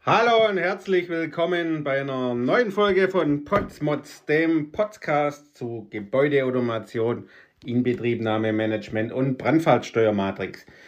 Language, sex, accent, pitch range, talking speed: German, male, German, 120-165 Hz, 100 wpm